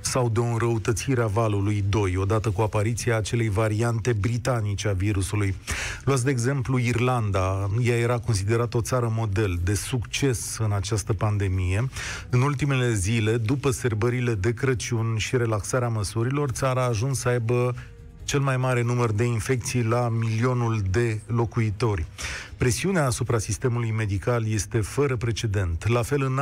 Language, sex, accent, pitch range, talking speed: Romanian, male, native, 110-140 Hz, 150 wpm